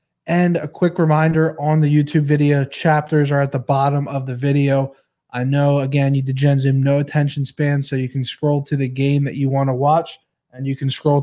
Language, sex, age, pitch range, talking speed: English, male, 20-39, 140-155 Hz, 220 wpm